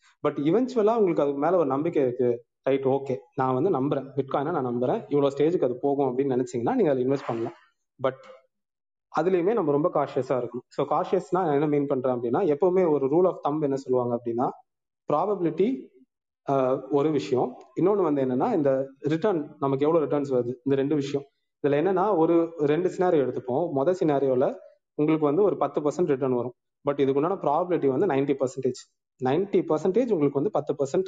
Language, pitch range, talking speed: Tamil, 130-165 Hz, 170 wpm